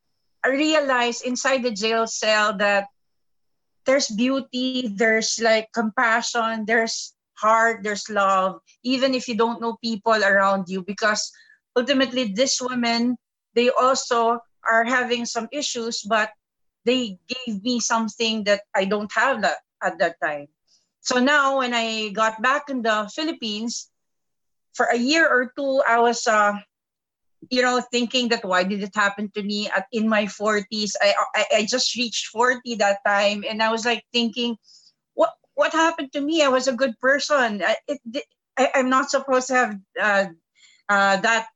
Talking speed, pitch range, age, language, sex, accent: 160 wpm, 210-250 Hz, 40-59, English, female, Filipino